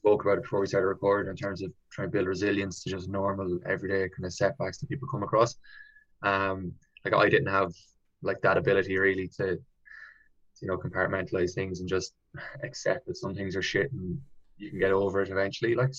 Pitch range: 95-100 Hz